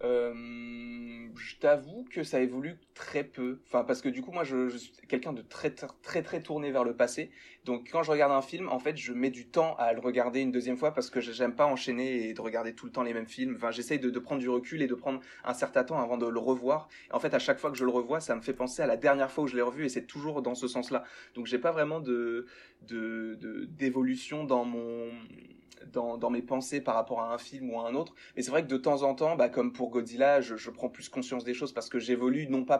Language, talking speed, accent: French, 275 wpm, French